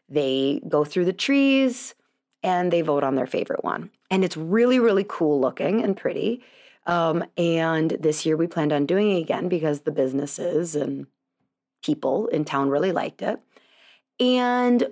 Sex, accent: female, American